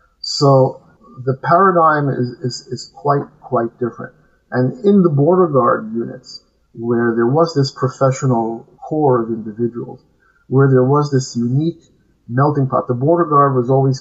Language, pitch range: English, 120-145 Hz